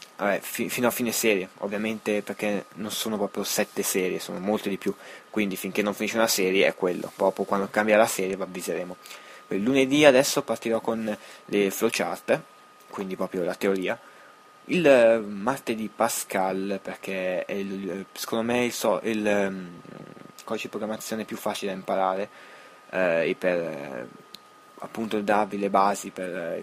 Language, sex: Italian, male